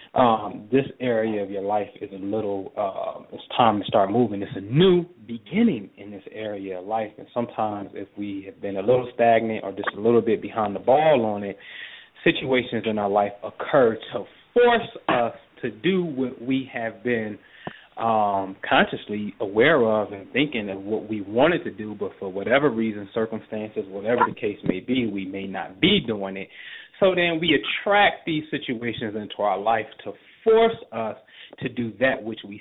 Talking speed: 190 wpm